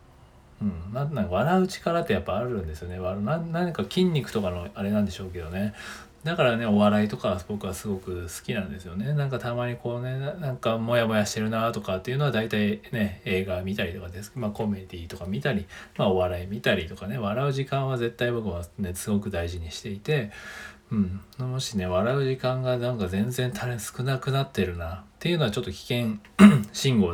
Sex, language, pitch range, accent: male, Japanese, 95-125 Hz, native